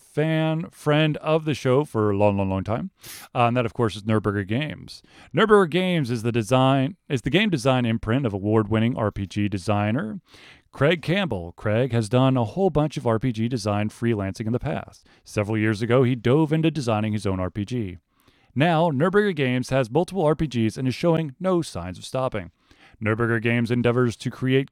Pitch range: 110-150 Hz